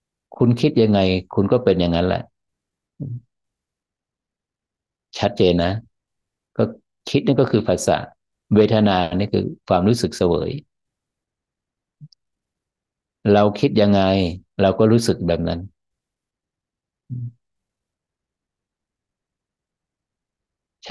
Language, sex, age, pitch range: Thai, male, 60-79, 90-115 Hz